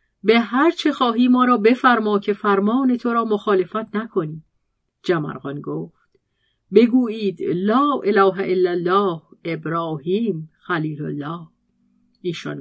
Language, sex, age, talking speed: Persian, female, 40-59, 110 wpm